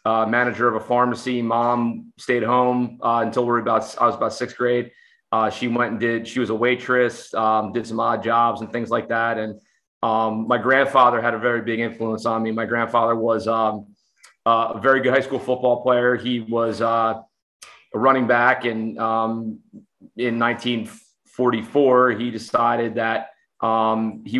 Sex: male